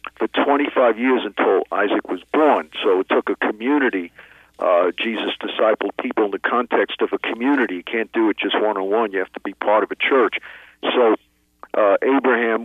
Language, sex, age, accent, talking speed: English, male, 50-69, American, 185 wpm